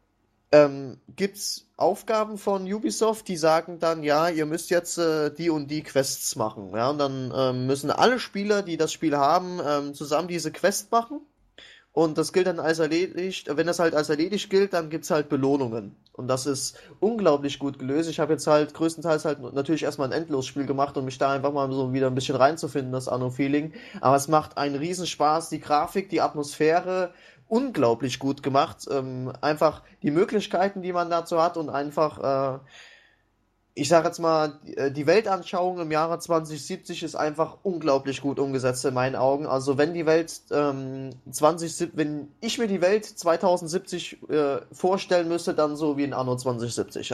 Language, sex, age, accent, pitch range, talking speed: English, male, 20-39, German, 140-175 Hz, 180 wpm